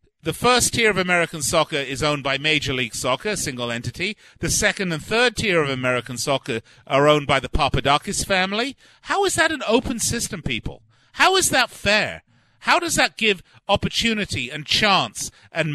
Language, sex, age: English, male, 40-59